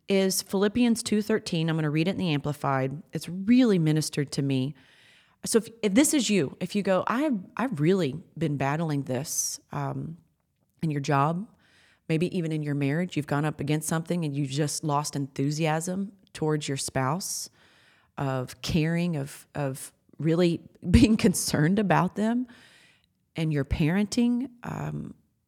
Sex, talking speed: female, 155 wpm